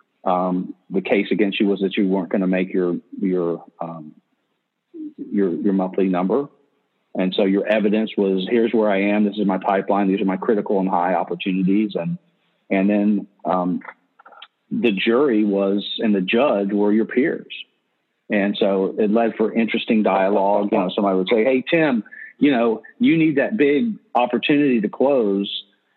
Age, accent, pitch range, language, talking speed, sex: 40-59, American, 95-115 Hz, English, 175 wpm, male